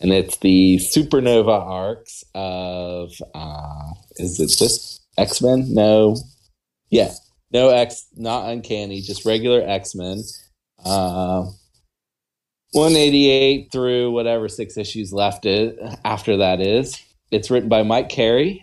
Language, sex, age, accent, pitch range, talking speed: English, male, 30-49, American, 85-110 Hz, 120 wpm